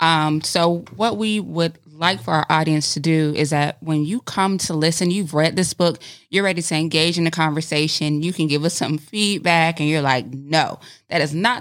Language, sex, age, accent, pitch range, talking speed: English, female, 20-39, American, 155-200 Hz, 215 wpm